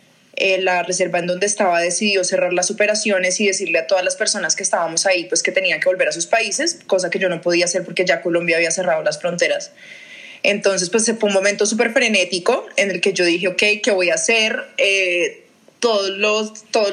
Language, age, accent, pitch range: Spanish, 20-39, Colombian, 185-235 Hz